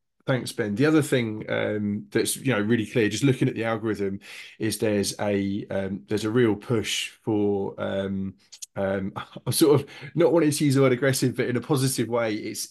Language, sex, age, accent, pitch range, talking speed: English, male, 20-39, British, 100-120 Hz, 205 wpm